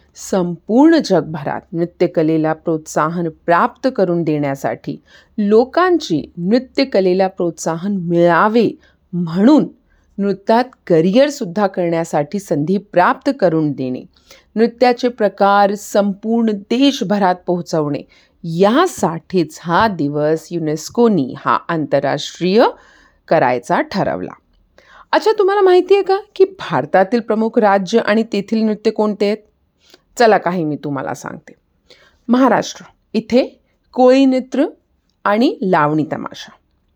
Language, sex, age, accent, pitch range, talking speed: Hindi, female, 40-59, native, 170-250 Hz, 90 wpm